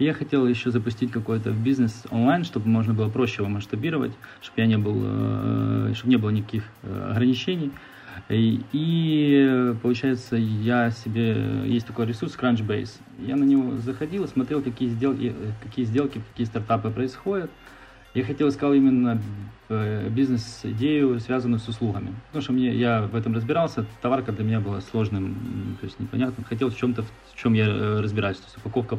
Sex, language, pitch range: male, Russian, 110-130 Hz